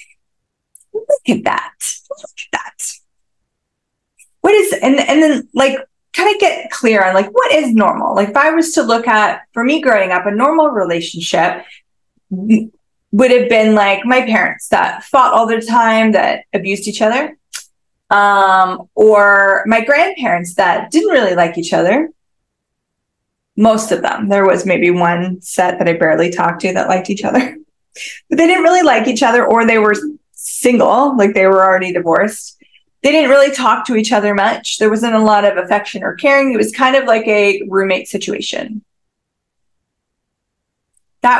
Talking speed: 170 wpm